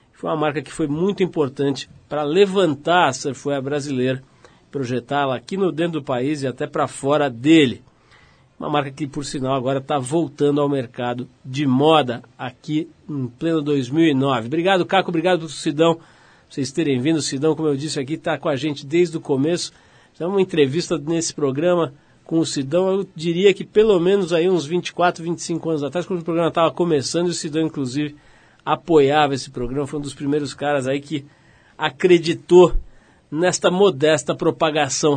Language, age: Portuguese, 50-69